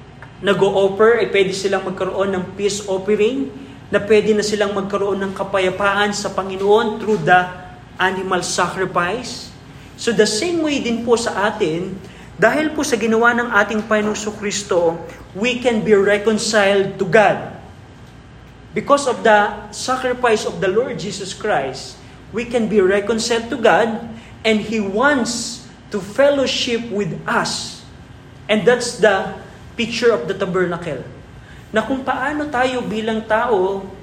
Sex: male